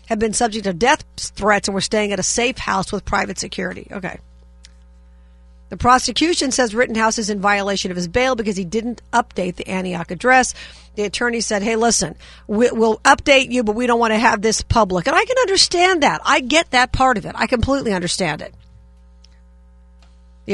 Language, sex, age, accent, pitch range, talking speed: English, female, 50-69, American, 175-240 Hz, 195 wpm